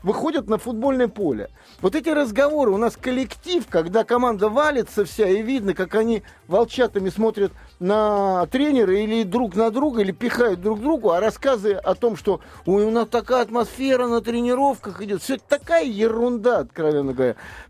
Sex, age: male, 50-69